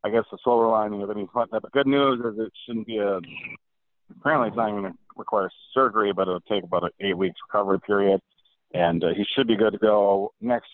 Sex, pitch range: male, 100-120 Hz